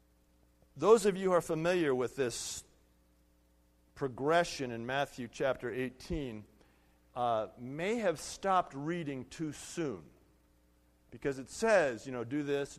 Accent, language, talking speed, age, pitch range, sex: American, English, 125 wpm, 50-69, 145-235 Hz, male